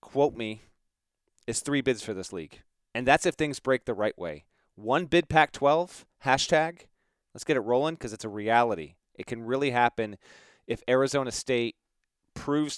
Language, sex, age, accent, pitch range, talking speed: English, male, 30-49, American, 115-145 Hz, 175 wpm